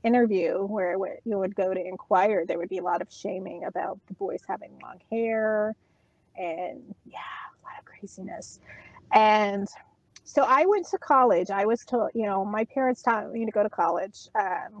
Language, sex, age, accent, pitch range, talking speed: English, female, 30-49, American, 195-230 Hz, 185 wpm